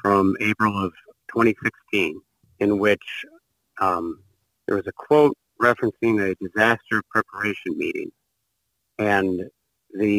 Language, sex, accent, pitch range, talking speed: English, male, American, 100-115 Hz, 105 wpm